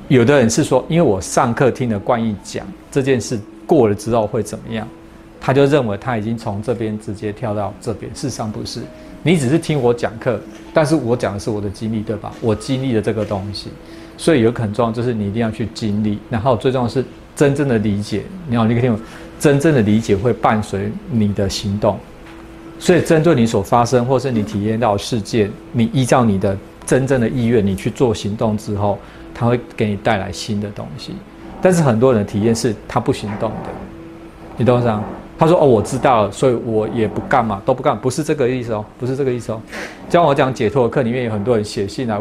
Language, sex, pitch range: Chinese, male, 105-130 Hz